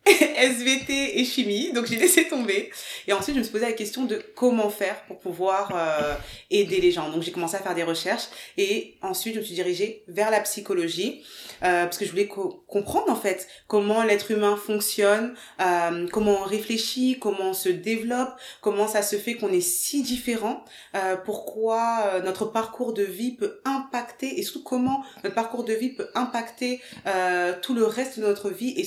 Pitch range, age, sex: 185-245 Hz, 20-39, female